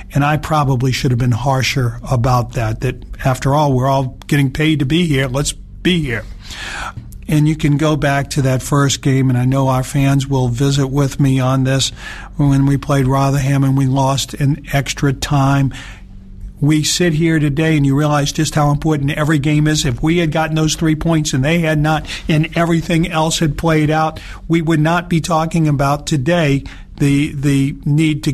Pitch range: 130-155 Hz